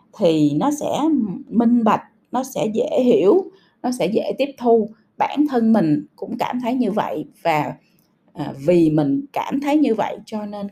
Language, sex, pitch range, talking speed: Vietnamese, female, 190-270 Hz, 175 wpm